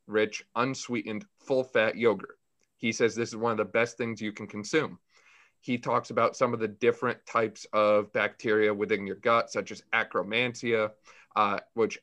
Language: English